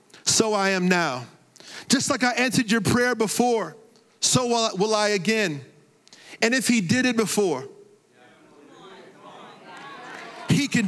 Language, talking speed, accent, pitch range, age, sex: English, 130 wpm, American, 155-200 Hz, 40-59, male